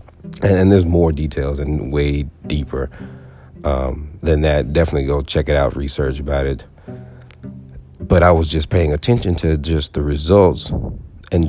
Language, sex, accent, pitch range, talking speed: English, male, American, 75-90 Hz, 150 wpm